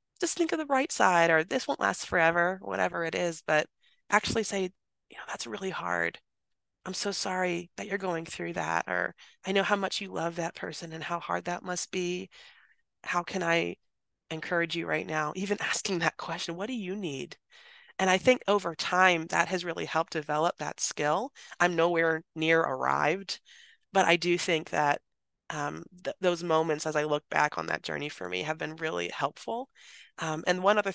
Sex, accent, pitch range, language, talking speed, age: female, American, 140-185 Hz, English, 195 wpm, 20-39